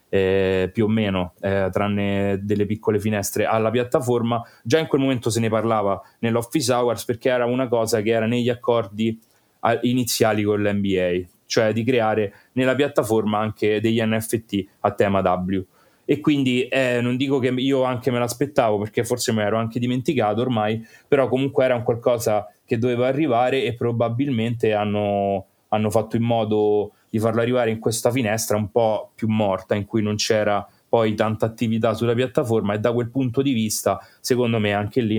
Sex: male